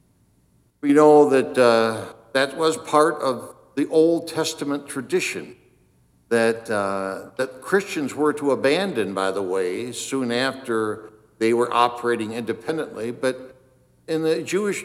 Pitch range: 110-145 Hz